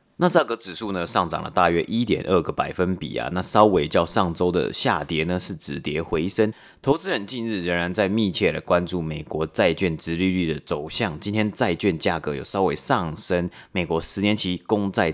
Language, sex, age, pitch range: Chinese, male, 30-49, 80-105 Hz